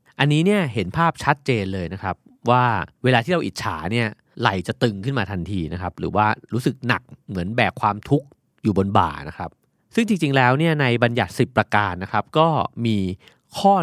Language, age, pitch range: Thai, 30-49, 95-130 Hz